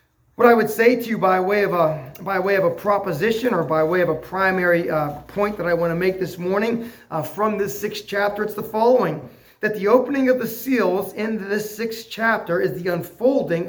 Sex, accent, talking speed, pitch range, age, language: male, American, 225 wpm, 165-215 Hz, 30-49, English